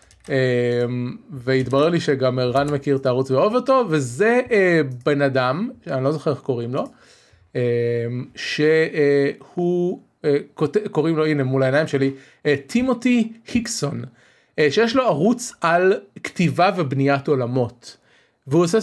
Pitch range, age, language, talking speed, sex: 130-170 Hz, 30-49, Hebrew, 135 wpm, male